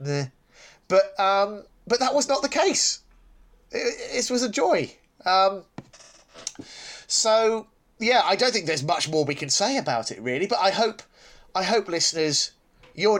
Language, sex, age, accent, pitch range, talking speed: English, male, 30-49, British, 140-200 Hz, 165 wpm